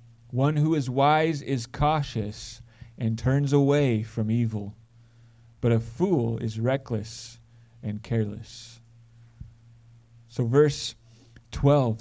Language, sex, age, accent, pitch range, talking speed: English, male, 30-49, American, 115-150 Hz, 105 wpm